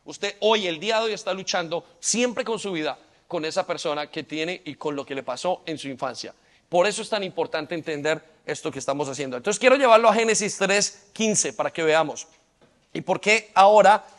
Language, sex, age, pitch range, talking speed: Spanish, male, 40-59, 165-210 Hz, 205 wpm